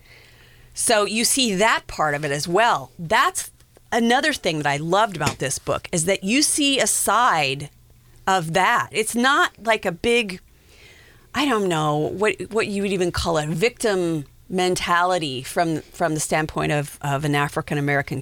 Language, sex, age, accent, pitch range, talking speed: English, female, 30-49, American, 150-215 Hz, 170 wpm